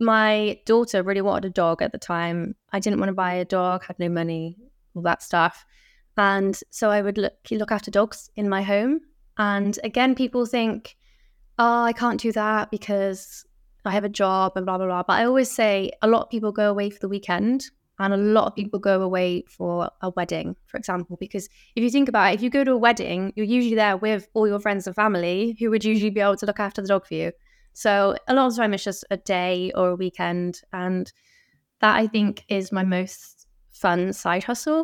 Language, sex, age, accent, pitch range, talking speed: English, female, 20-39, British, 185-220 Hz, 225 wpm